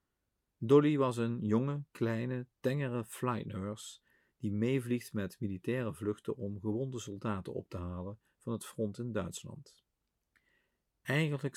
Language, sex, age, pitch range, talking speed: Dutch, male, 50-69, 100-125 Hz, 125 wpm